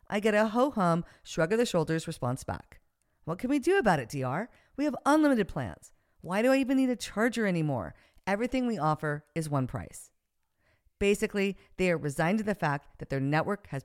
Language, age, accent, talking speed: English, 50-69, American, 185 wpm